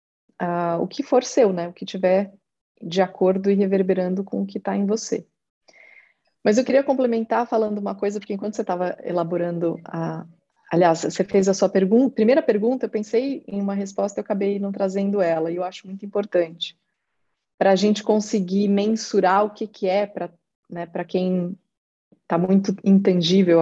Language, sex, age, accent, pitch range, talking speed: Portuguese, female, 30-49, Brazilian, 180-215 Hz, 180 wpm